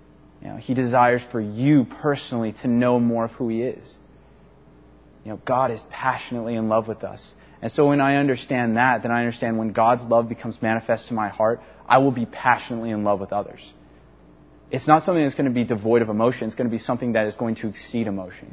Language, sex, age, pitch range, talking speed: English, male, 30-49, 105-130 Hz, 215 wpm